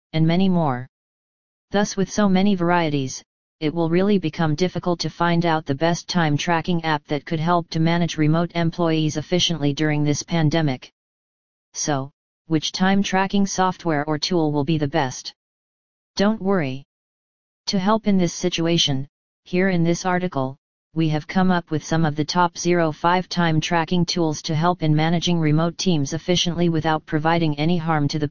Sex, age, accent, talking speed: female, 40-59, American, 170 wpm